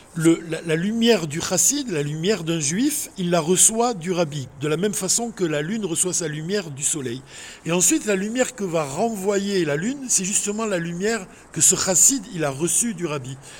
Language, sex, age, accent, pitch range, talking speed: French, male, 60-79, French, 160-220 Hz, 210 wpm